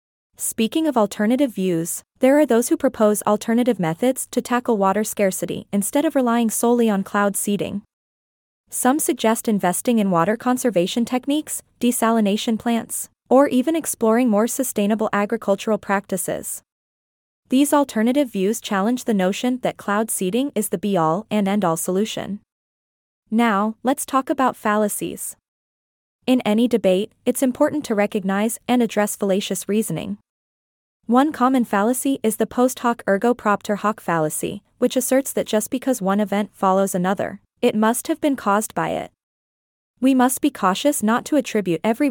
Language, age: English, 20-39